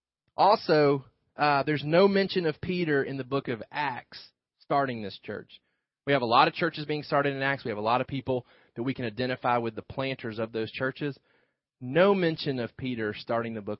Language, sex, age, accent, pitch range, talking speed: English, male, 30-49, American, 125-180 Hz, 200 wpm